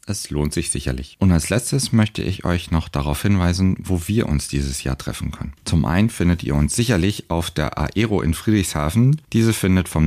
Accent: German